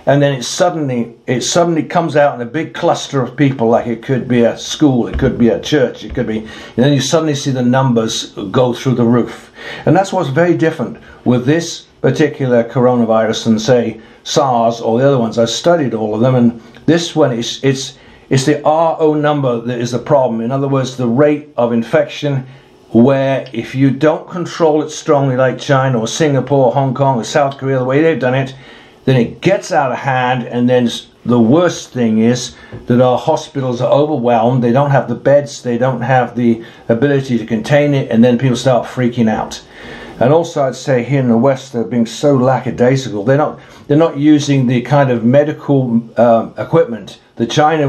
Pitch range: 120-145 Hz